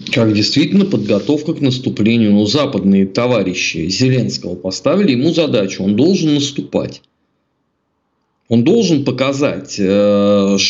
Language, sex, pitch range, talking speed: Russian, male, 120-160 Hz, 100 wpm